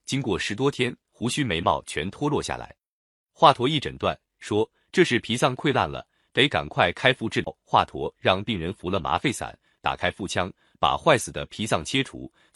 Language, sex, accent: Chinese, male, native